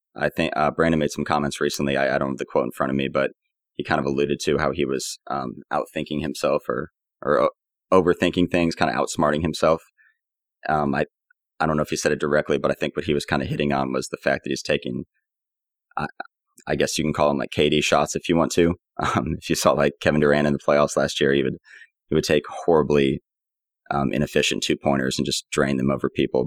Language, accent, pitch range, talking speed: English, American, 70-80 Hz, 245 wpm